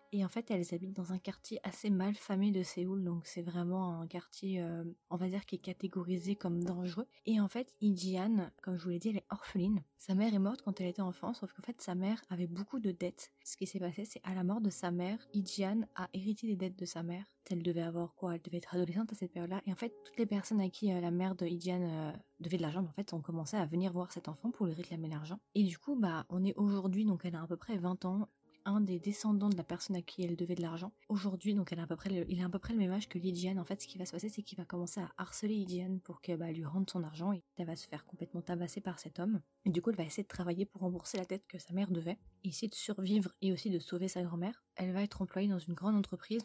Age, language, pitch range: 20-39, French, 175-200 Hz